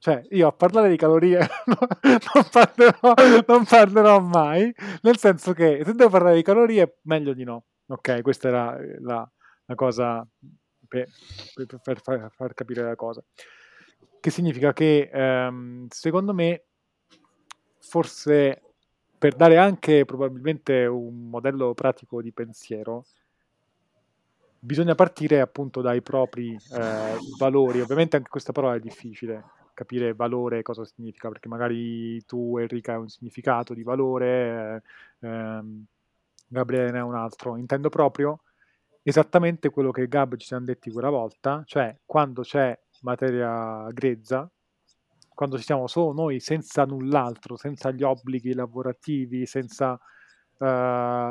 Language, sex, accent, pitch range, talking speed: Italian, male, native, 120-155 Hz, 130 wpm